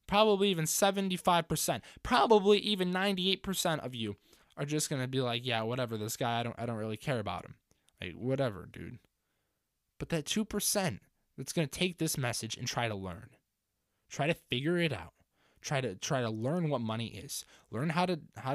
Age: 20-39